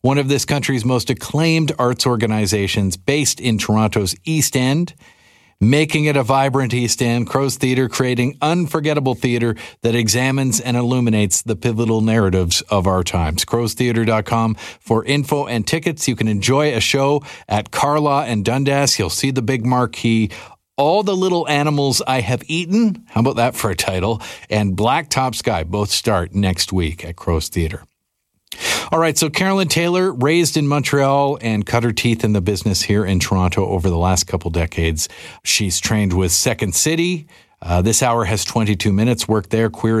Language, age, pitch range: English, 40-59, 105-140 Hz